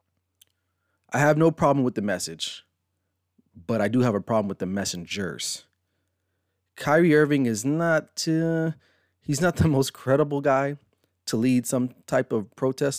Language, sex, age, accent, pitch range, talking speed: English, male, 30-49, American, 95-130 Hz, 150 wpm